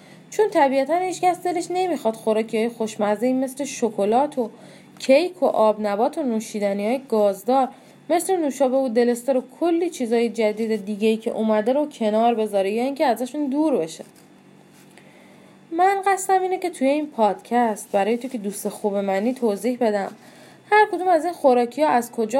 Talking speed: 160 wpm